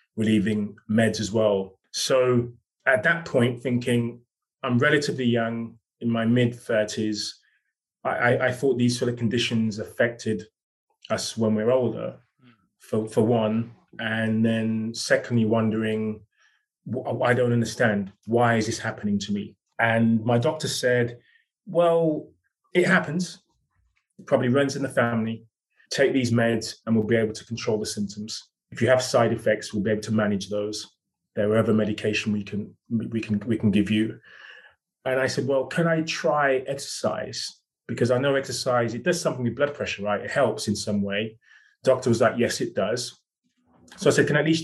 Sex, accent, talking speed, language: male, British, 170 wpm, English